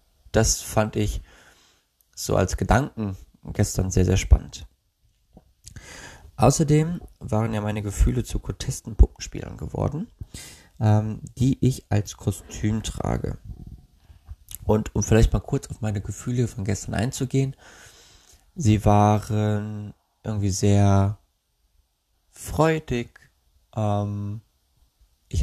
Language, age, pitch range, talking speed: German, 20-39, 95-110 Hz, 95 wpm